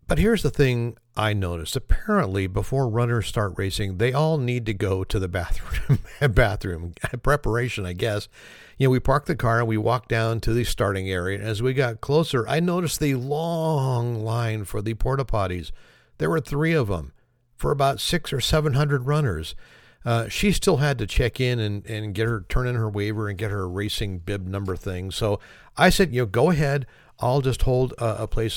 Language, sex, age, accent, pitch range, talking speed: English, male, 50-69, American, 105-135 Hz, 205 wpm